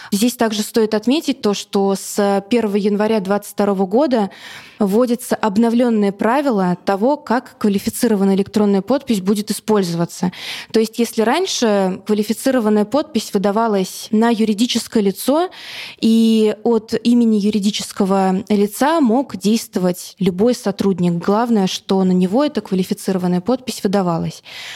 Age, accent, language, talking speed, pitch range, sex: 20-39, native, Russian, 115 wpm, 195-230 Hz, female